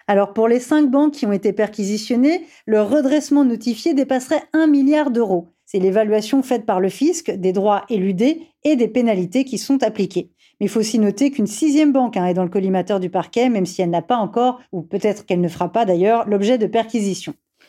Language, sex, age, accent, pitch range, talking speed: French, female, 40-59, French, 210-275 Hz, 205 wpm